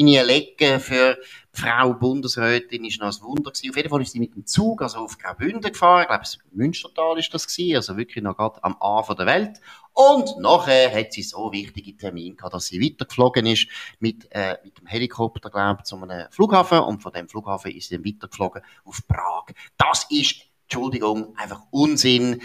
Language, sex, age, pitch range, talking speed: German, male, 30-49, 100-130 Hz, 185 wpm